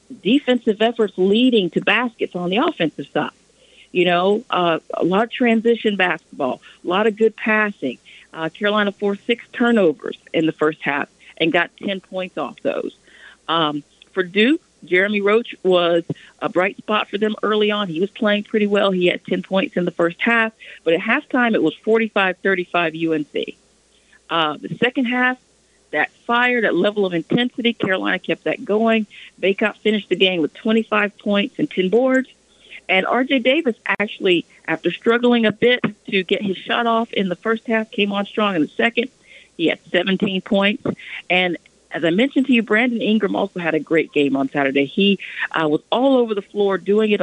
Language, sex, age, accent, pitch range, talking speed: English, female, 50-69, American, 180-230 Hz, 185 wpm